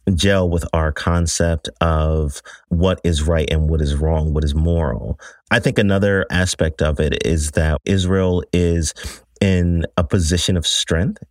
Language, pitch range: English, 80-95 Hz